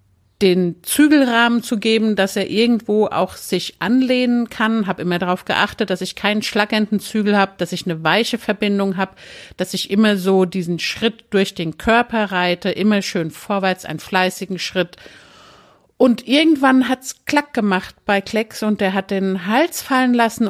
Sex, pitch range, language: female, 185-230 Hz, German